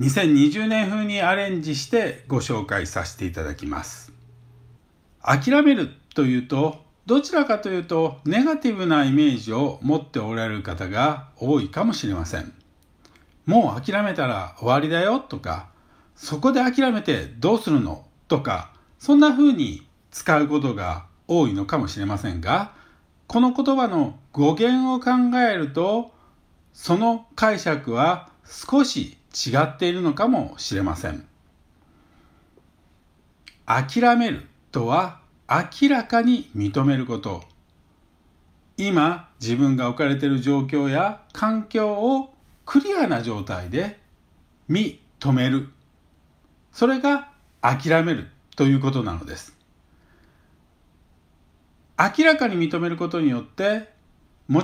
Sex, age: male, 60-79